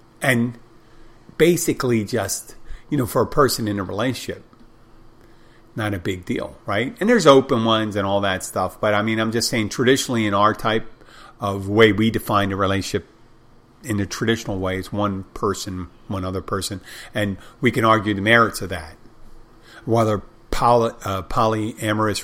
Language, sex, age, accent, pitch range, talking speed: English, male, 50-69, American, 100-120 Hz, 165 wpm